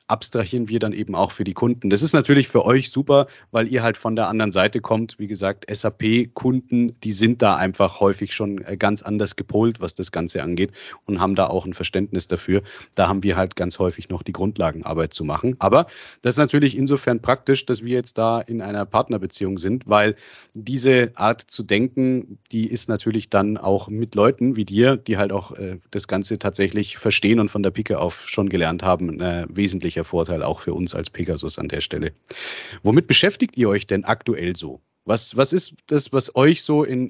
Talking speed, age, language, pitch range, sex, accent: 200 wpm, 30-49, German, 95-120 Hz, male, German